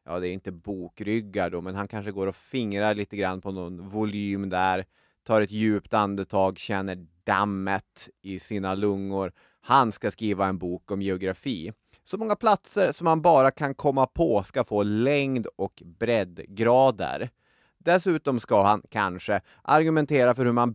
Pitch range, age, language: 95-130 Hz, 30-49, Swedish